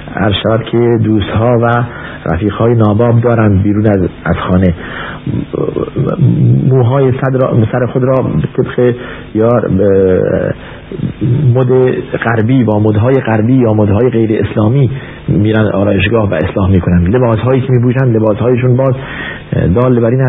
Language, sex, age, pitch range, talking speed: Persian, male, 50-69, 100-125 Hz, 130 wpm